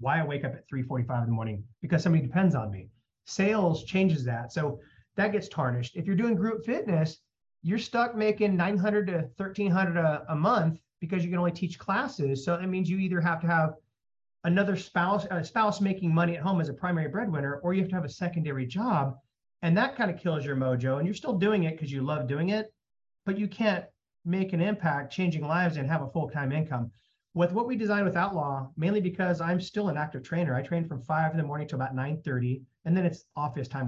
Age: 30-49